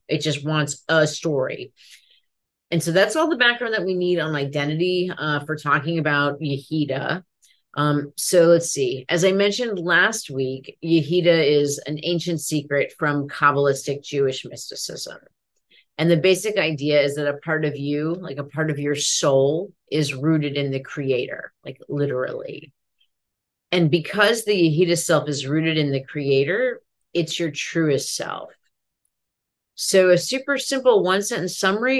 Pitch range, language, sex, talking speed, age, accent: 145-185 Hz, English, female, 155 wpm, 30-49, American